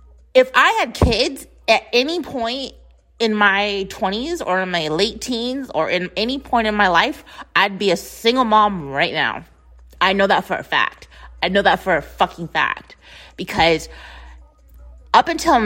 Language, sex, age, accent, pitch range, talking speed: English, female, 30-49, American, 160-215 Hz, 175 wpm